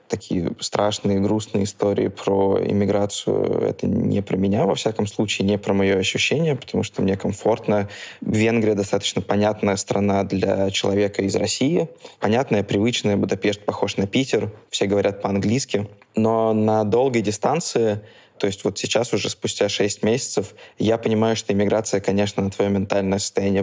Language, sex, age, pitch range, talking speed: Russian, male, 20-39, 100-110 Hz, 150 wpm